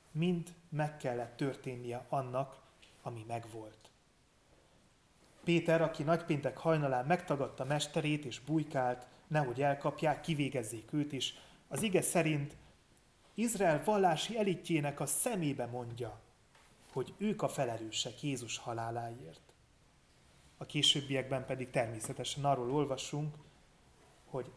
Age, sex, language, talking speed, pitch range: 30-49, male, Hungarian, 105 wpm, 125-155 Hz